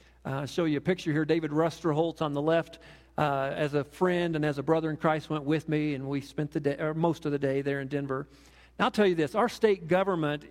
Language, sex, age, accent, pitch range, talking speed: English, male, 50-69, American, 140-170 Hz, 265 wpm